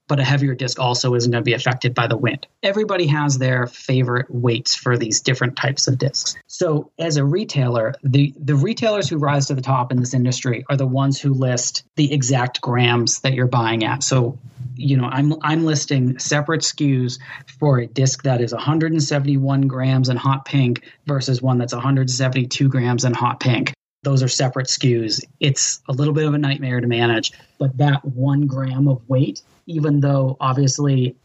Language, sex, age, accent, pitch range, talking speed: English, male, 30-49, American, 125-145 Hz, 190 wpm